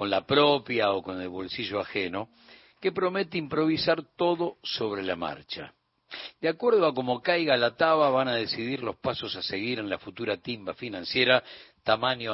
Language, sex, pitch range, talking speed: Spanish, male, 115-170 Hz, 170 wpm